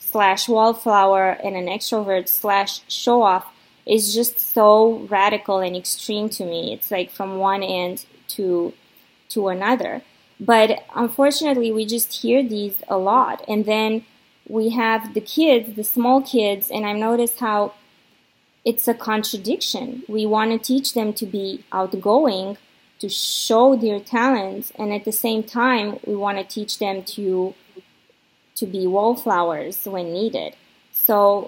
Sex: female